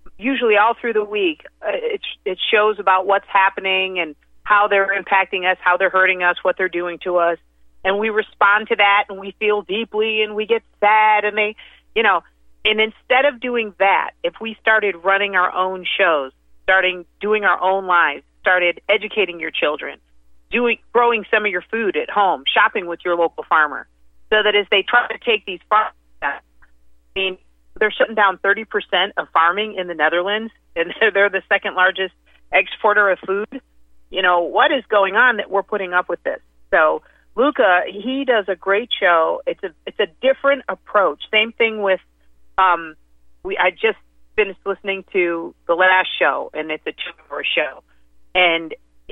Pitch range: 175-220 Hz